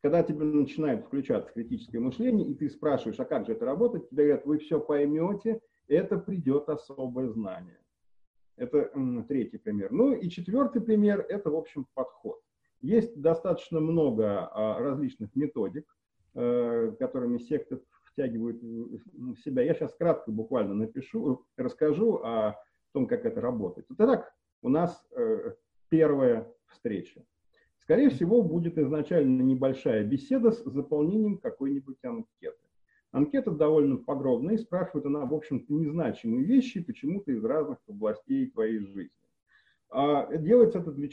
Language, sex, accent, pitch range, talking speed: Russian, male, native, 140-235 Hz, 135 wpm